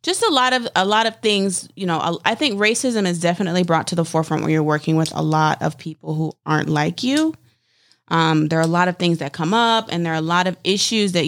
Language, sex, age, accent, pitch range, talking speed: English, female, 20-39, American, 155-190 Hz, 260 wpm